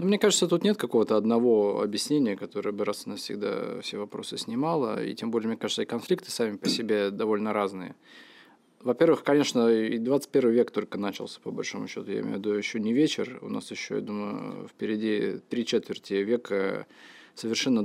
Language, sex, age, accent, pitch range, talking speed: Russian, male, 20-39, native, 105-150 Hz, 180 wpm